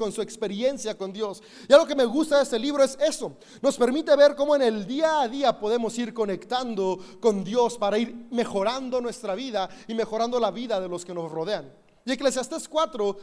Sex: male